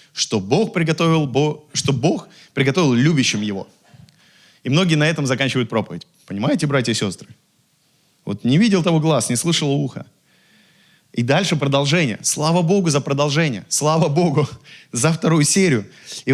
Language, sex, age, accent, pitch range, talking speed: Russian, male, 20-39, native, 155-210 Hz, 135 wpm